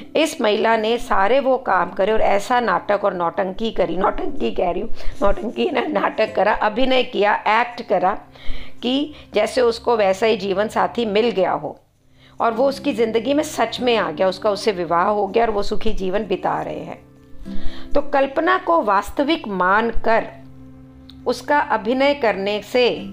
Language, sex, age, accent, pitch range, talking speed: English, female, 50-69, Indian, 190-240 Hz, 170 wpm